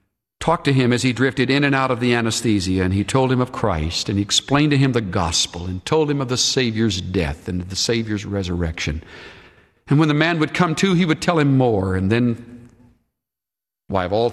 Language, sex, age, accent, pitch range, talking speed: English, male, 60-79, American, 95-135 Hz, 225 wpm